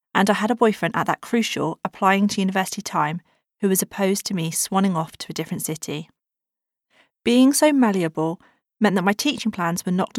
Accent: British